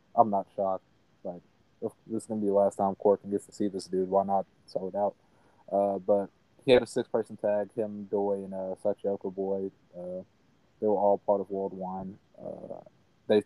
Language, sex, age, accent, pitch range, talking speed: English, male, 20-39, American, 95-105 Hz, 215 wpm